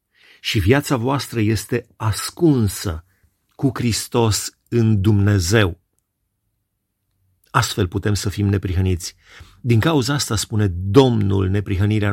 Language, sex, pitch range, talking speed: Romanian, male, 95-130 Hz, 100 wpm